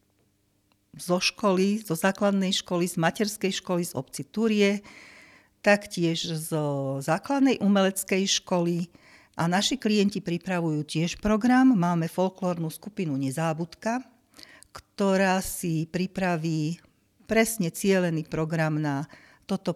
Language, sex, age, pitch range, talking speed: Slovak, female, 50-69, 160-195 Hz, 105 wpm